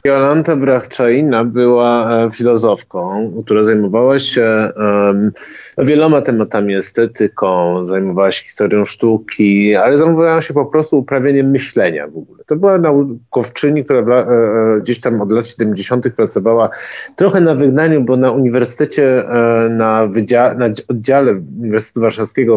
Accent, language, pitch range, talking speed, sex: native, Polish, 115-160 Hz, 130 wpm, male